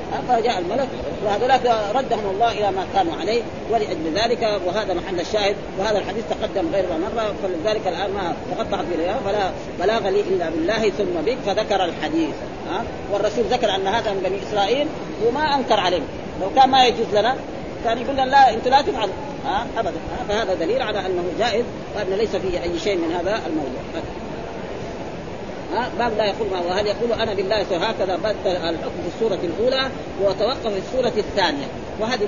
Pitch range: 210-275 Hz